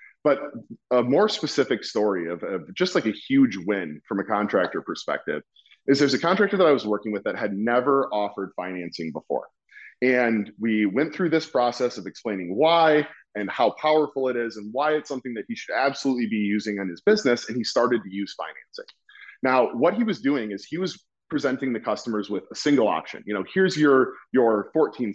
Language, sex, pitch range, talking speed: English, male, 105-155 Hz, 205 wpm